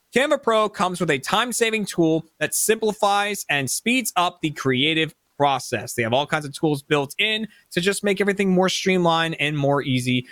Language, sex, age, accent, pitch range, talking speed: English, male, 20-39, American, 140-195 Hz, 185 wpm